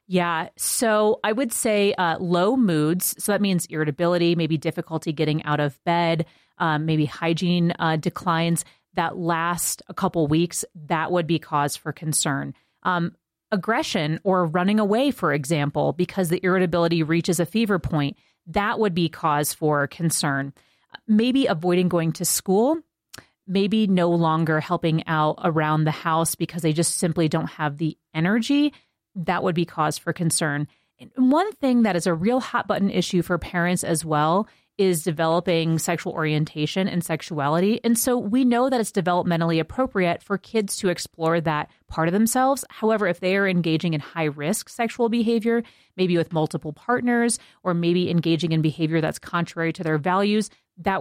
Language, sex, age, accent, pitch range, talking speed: English, female, 30-49, American, 160-200 Hz, 165 wpm